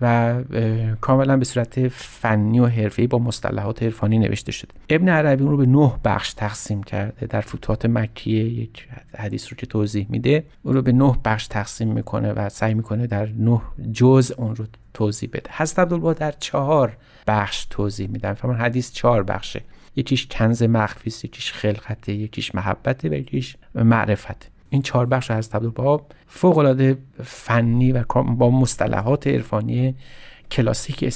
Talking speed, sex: 160 wpm, male